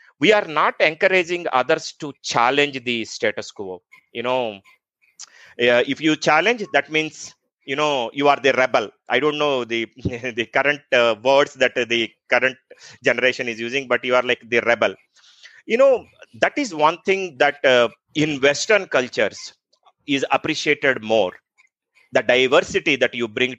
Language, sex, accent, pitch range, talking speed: English, male, Indian, 125-150 Hz, 160 wpm